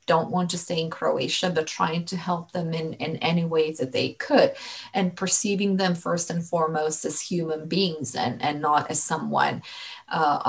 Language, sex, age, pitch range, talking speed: English, female, 30-49, 165-190 Hz, 190 wpm